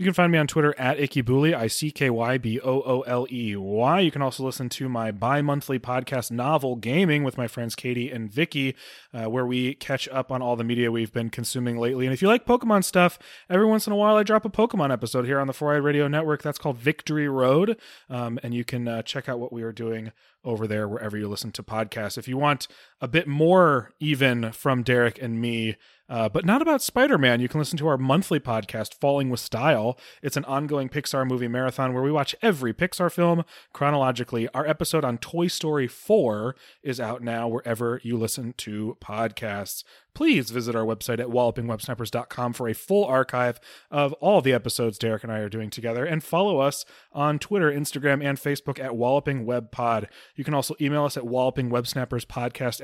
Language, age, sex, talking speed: English, 30-49, male, 195 wpm